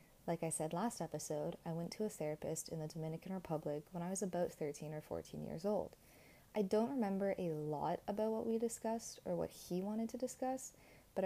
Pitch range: 160-195 Hz